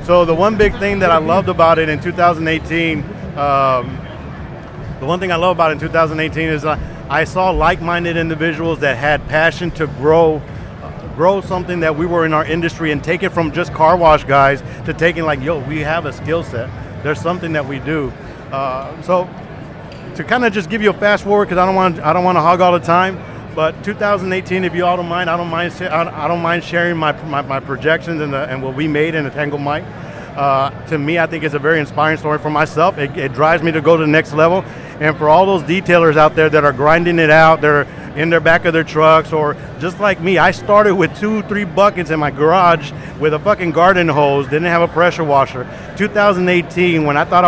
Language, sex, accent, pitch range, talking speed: English, male, American, 150-175 Hz, 230 wpm